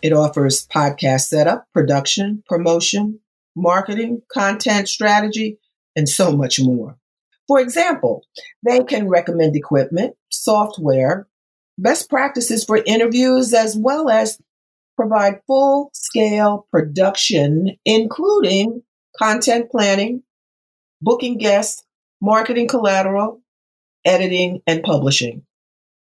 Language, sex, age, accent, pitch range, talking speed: English, female, 50-69, American, 155-240 Hz, 95 wpm